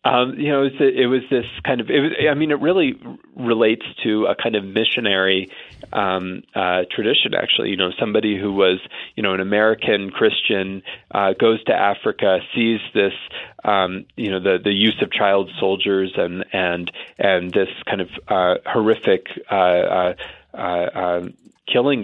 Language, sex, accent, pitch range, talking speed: English, male, American, 95-115 Hz, 170 wpm